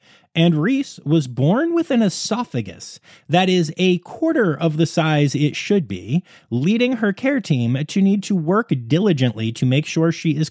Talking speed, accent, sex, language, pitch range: 175 wpm, American, male, English, 130-195 Hz